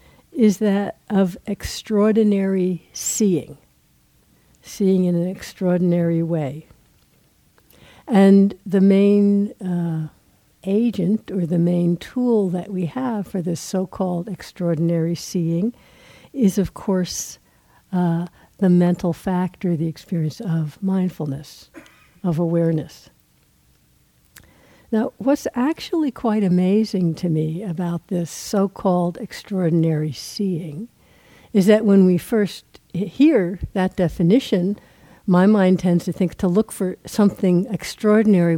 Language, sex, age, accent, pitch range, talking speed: English, female, 60-79, American, 170-200 Hz, 110 wpm